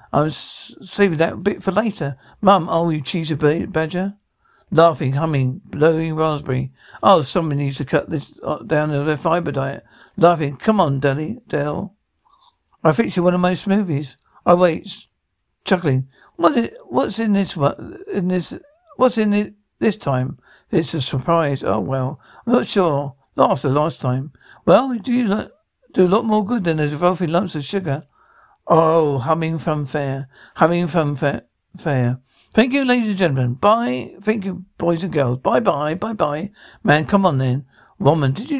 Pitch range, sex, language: 140-195 Hz, male, English